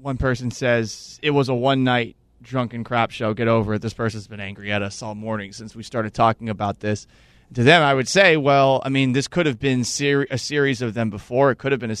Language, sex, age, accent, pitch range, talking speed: English, male, 30-49, American, 115-150 Hz, 245 wpm